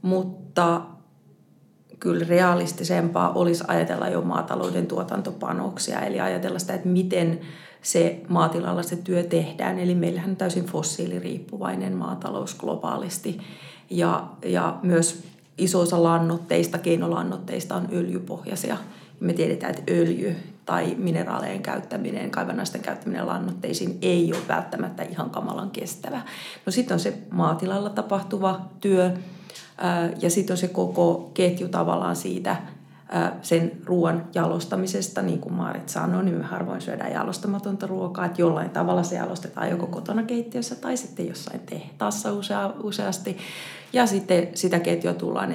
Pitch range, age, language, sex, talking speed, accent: 165-190 Hz, 30-49, Finnish, female, 125 wpm, native